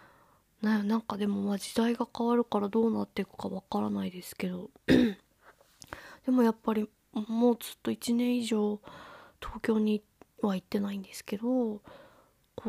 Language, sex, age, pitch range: Japanese, female, 20-39, 195-215 Hz